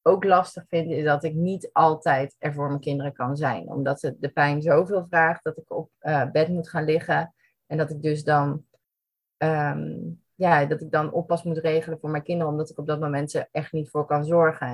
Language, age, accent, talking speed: Dutch, 30-49, Dutch, 225 wpm